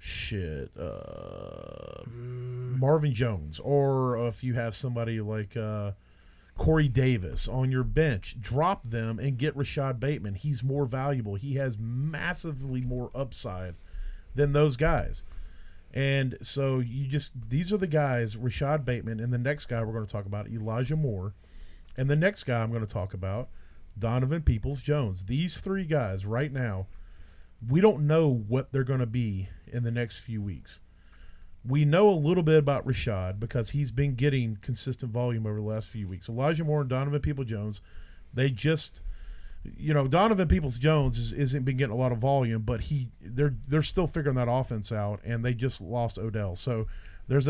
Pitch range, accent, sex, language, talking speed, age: 110-145 Hz, American, male, English, 170 wpm, 40-59